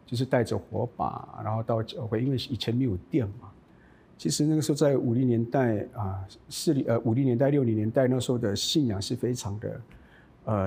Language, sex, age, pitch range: Chinese, male, 50-69, 115-150 Hz